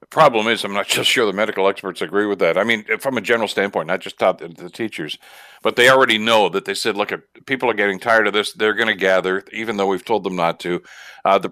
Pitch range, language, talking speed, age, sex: 100-120 Hz, English, 260 wpm, 60-79, male